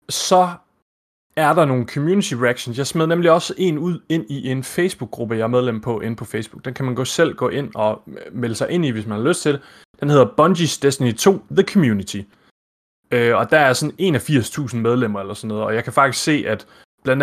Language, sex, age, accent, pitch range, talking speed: Danish, male, 30-49, native, 120-175 Hz, 220 wpm